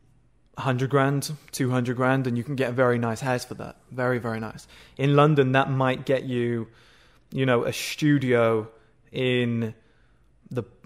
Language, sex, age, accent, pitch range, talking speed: English, male, 20-39, British, 125-145 Hz, 165 wpm